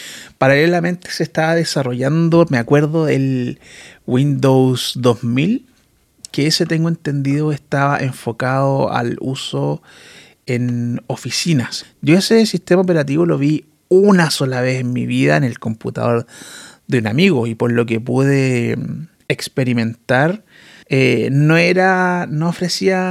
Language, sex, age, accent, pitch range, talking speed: Spanish, male, 30-49, Argentinian, 125-150 Hz, 125 wpm